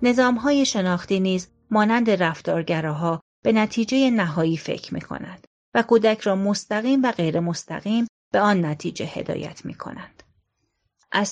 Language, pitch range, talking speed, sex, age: Persian, 175-225 Hz, 140 wpm, female, 30-49